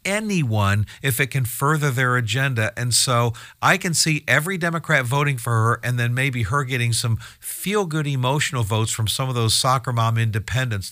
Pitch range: 110-140 Hz